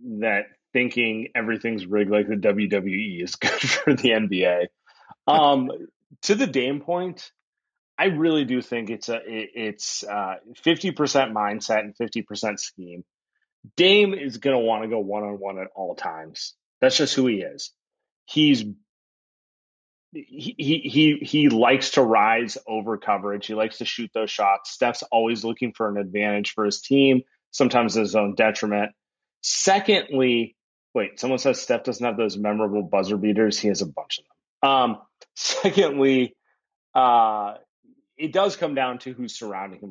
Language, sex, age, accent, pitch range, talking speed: English, male, 30-49, American, 105-150 Hz, 160 wpm